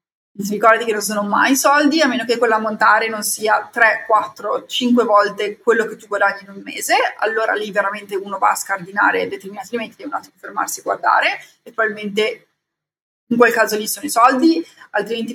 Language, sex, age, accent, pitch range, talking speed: Italian, female, 30-49, native, 210-255 Hz, 200 wpm